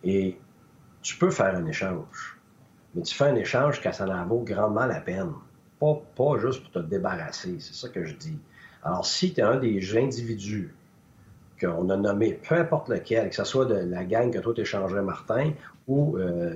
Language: French